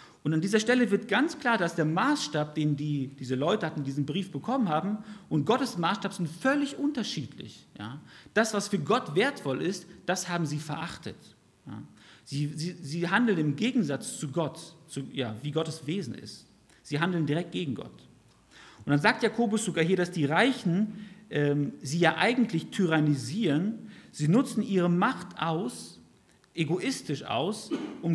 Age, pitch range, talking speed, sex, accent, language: 50-69, 145-205 Hz, 165 wpm, male, German, German